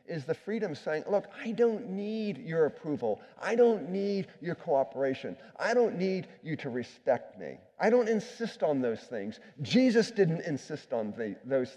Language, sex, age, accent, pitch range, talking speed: English, male, 50-69, American, 135-200 Hz, 170 wpm